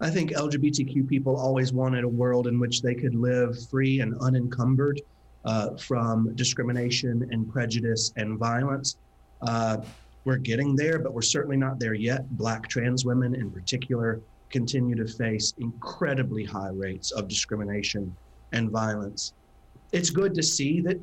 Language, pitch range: English, 115-130 Hz